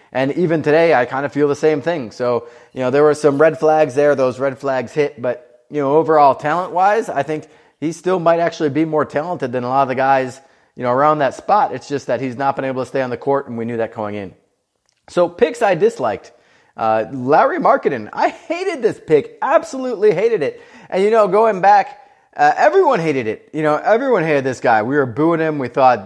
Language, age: English, 30-49